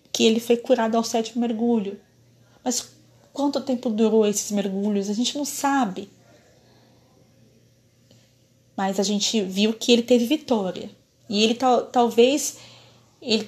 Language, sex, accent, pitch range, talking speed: Portuguese, female, Brazilian, 195-235 Hz, 135 wpm